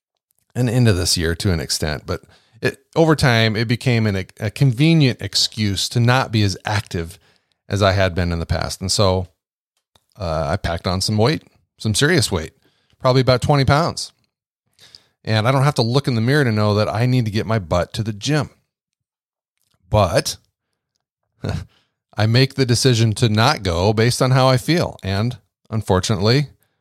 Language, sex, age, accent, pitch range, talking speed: English, male, 40-59, American, 100-125 Hz, 180 wpm